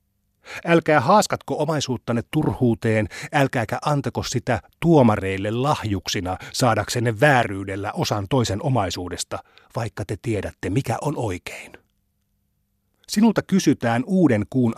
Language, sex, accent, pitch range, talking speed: Finnish, male, native, 100-135 Hz, 95 wpm